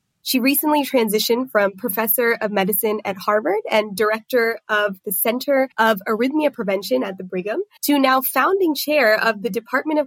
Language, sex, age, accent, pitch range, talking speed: English, female, 20-39, American, 210-260 Hz, 165 wpm